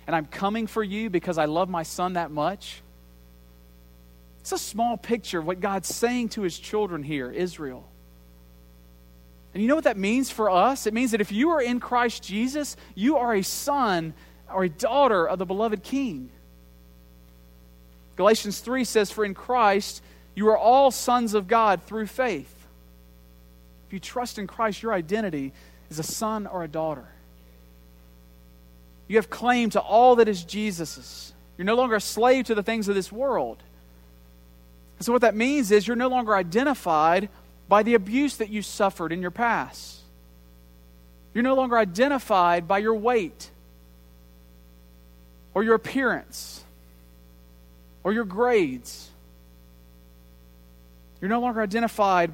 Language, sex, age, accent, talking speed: English, male, 40-59, American, 155 wpm